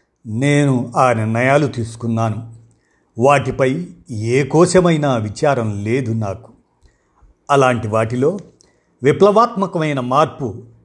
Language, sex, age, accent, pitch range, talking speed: Telugu, male, 50-69, native, 115-140 Hz, 75 wpm